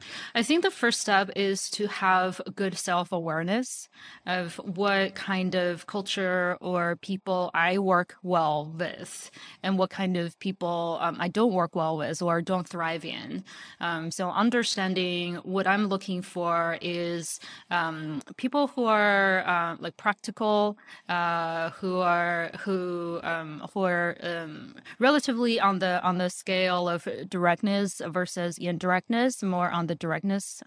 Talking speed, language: 145 wpm, English